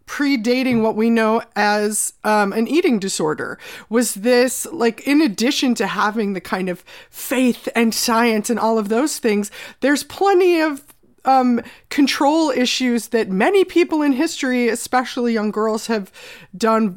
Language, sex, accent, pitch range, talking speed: English, female, American, 210-250 Hz, 150 wpm